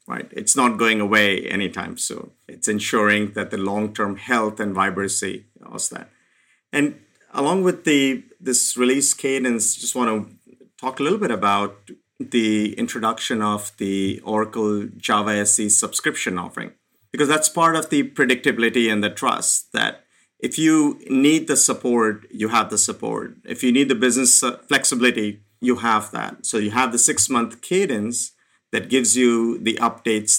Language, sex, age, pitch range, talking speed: English, male, 50-69, 105-135 Hz, 160 wpm